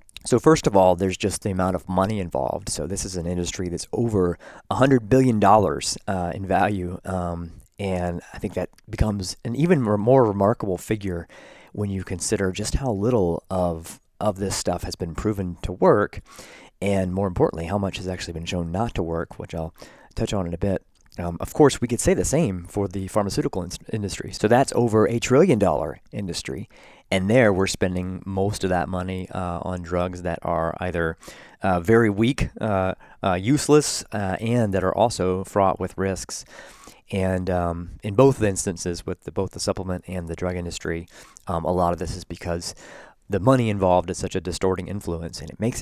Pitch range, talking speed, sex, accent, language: 90-105 Hz, 195 wpm, male, American, English